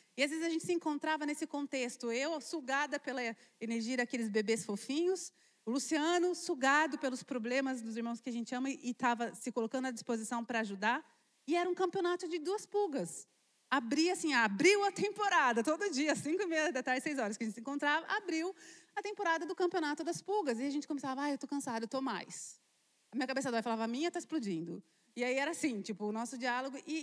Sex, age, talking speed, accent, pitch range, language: female, 30-49, 215 wpm, Brazilian, 235-310 Hz, Portuguese